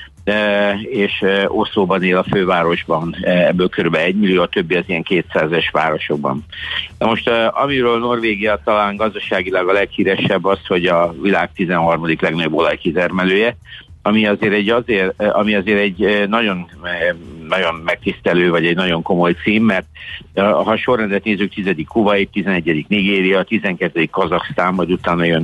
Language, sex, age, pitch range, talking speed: Hungarian, male, 60-79, 90-105 Hz, 130 wpm